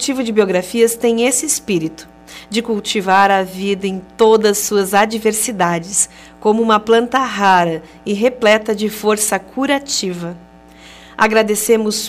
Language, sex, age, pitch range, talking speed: Portuguese, female, 40-59, 175-235 Hz, 125 wpm